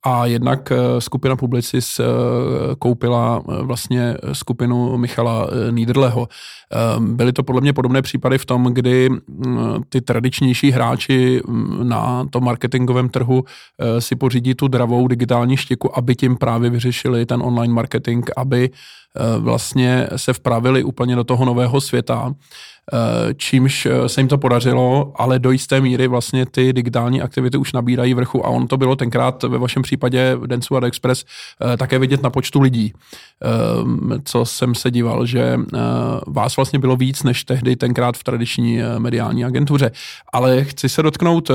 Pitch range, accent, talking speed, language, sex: 120-135 Hz, native, 140 wpm, Czech, male